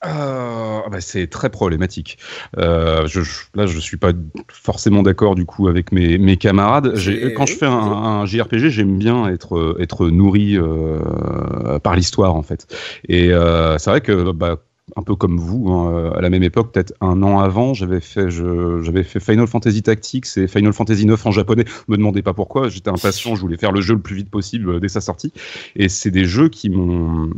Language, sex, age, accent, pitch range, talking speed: French, male, 30-49, French, 90-125 Hz, 210 wpm